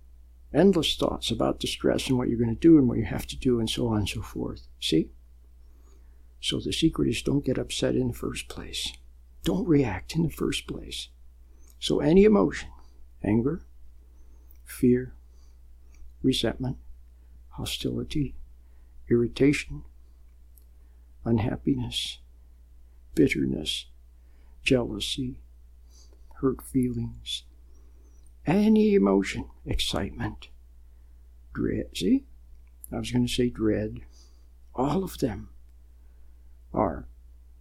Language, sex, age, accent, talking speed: English, male, 60-79, American, 105 wpm